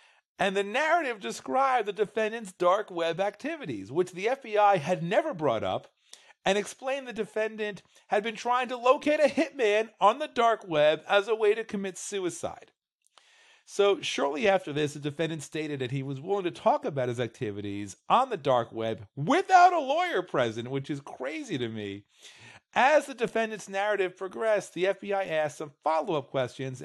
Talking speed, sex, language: 170 wpm, male, English